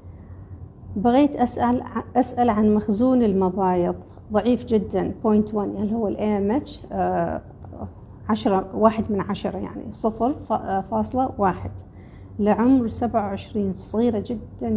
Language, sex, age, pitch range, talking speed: Arabic, female, 40-59, 130-225 Hz, 120 wpm